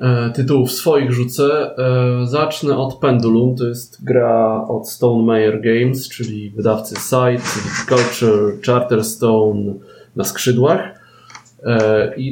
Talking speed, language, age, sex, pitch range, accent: 100 wpm, Polish, 20-39, male, 110-130 Hz, native